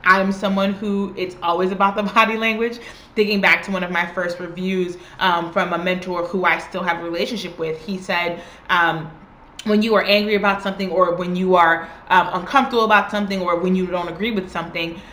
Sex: female